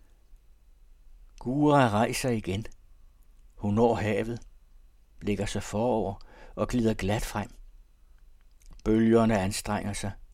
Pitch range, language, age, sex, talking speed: 85-110 Hz, Danish, 60-79, male, 95 wpm